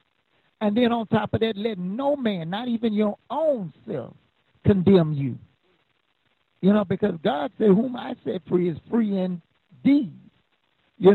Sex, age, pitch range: male, 60-79, 160-220 Hz